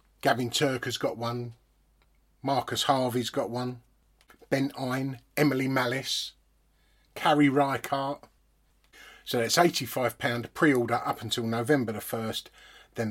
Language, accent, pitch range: English, British, 110-140 Hz